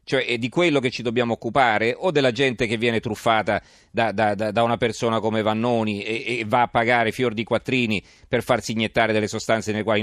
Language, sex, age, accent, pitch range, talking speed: Italian, male, 40-59, native, 110-135 Hz, 215 wpm